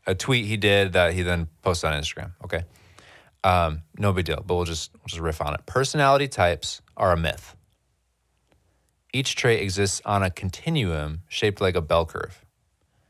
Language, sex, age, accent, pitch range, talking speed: English, male, 20-39, American, 80-100 Hz, 175 wpm